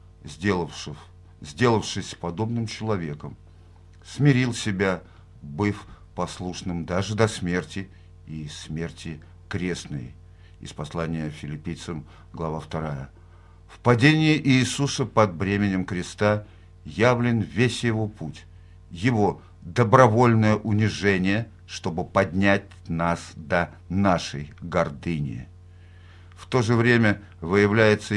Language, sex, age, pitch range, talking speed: Russian, male, 50-69, 90-110 Hz, 90 wpm